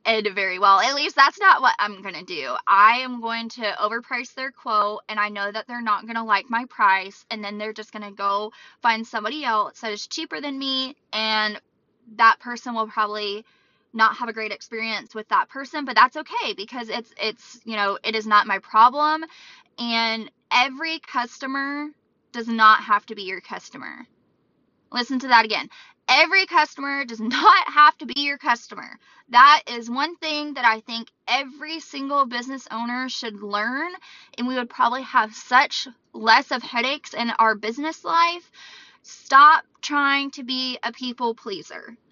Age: 20-39